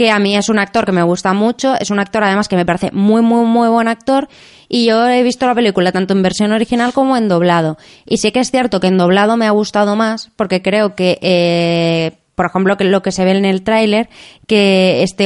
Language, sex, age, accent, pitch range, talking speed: Spanish, female, 20-39, Spanish, 185-215 Hz, 250 wpm